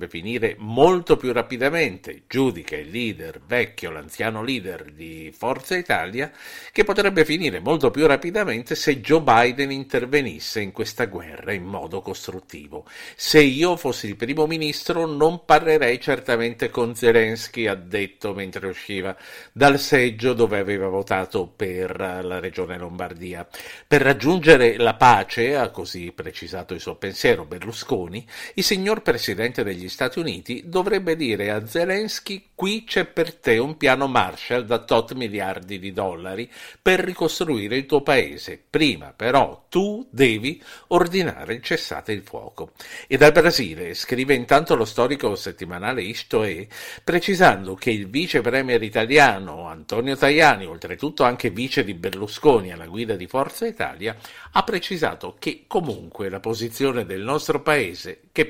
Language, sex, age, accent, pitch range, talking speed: Italian, male, 50-69, native, 100-155 Hz, 140 wpm